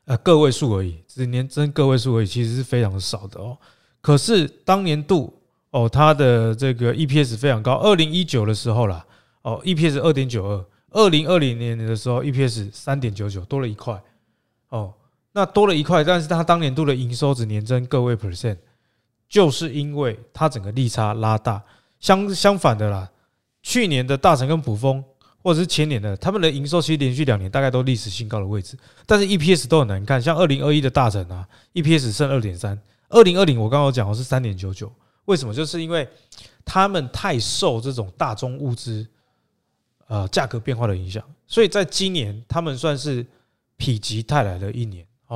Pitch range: 110-150 Hz